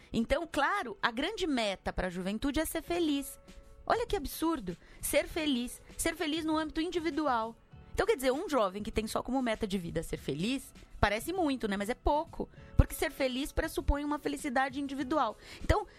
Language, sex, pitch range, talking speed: Portuguese, female, 165-270 Hz, 185 wpm